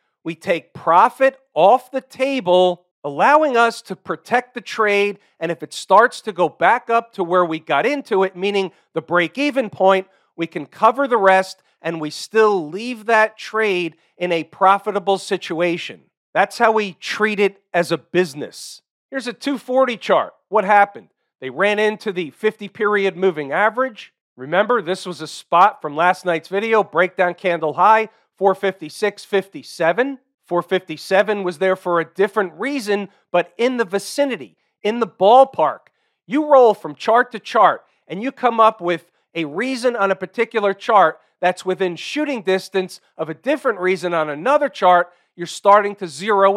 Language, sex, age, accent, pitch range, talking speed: English, male, 40-59, American, 175-220 Hz, 160 wpm